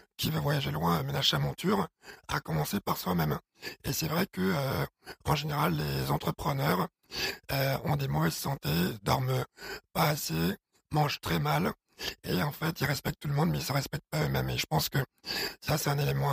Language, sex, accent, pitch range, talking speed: French, male, French, 145-170 Hz, 200 wpm